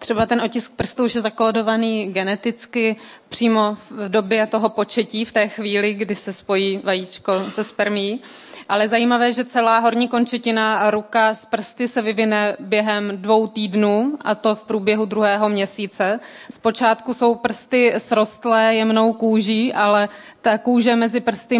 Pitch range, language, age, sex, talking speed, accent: 205-225 Hz, Czech, 20-39, female, 150 wpm, native